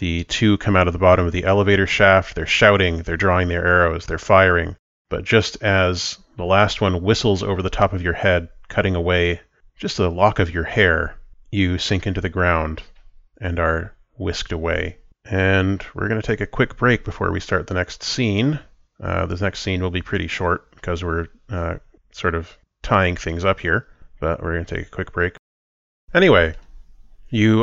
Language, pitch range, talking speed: English, 90-105 Hz, 195 wpm